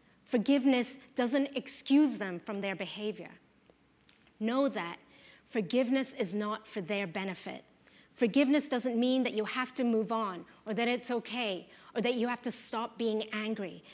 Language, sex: English, female